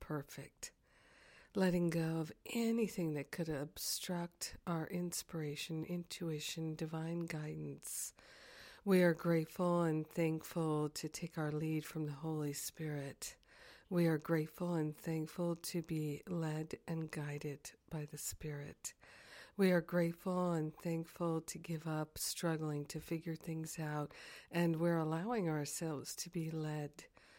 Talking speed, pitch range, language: 130 wpm, 150-170 Hz, English